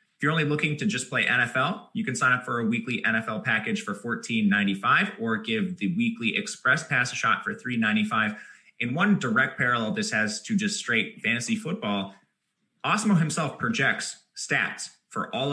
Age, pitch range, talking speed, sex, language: 20-39, 130-210 Hz, 170 wpm, male, English